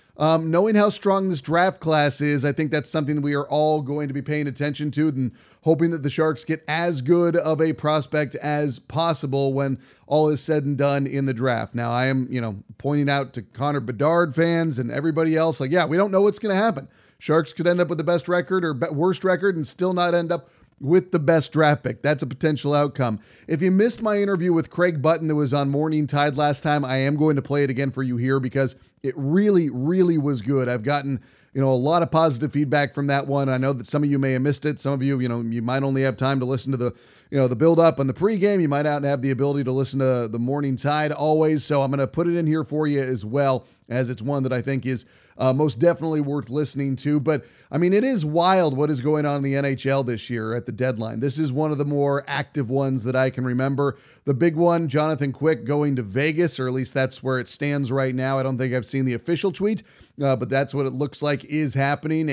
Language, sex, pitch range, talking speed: English, male, 135-160 Hz, 260 wpm